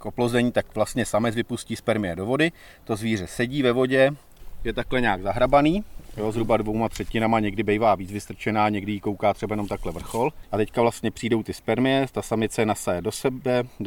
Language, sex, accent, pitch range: Czech, male, native, 100-120 Hz